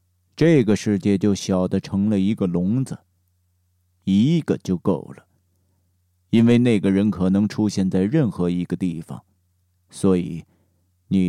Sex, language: male, Chinese